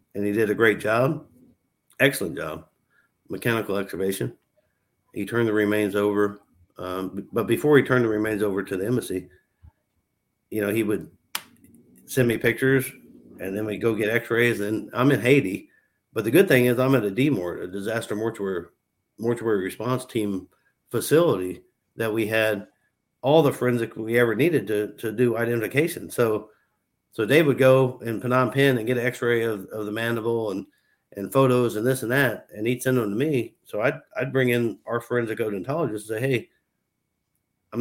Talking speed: 180 wpm